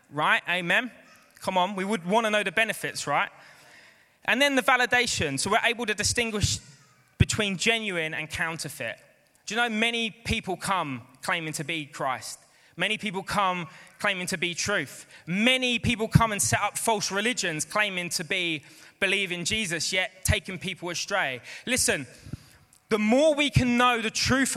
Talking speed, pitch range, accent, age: 165 wpm, 160-230 Hz, British, 20-39